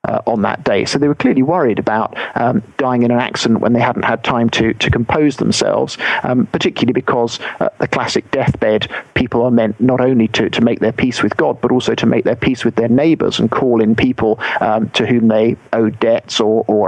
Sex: male